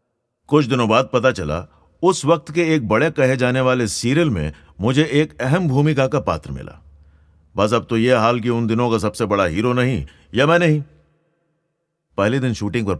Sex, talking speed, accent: male, 195 wpm, native